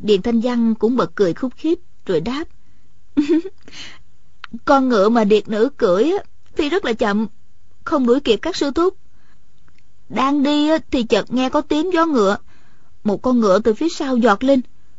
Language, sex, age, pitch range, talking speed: Vietnamese, female, 20-39, 210-285 Hz, 170 wpm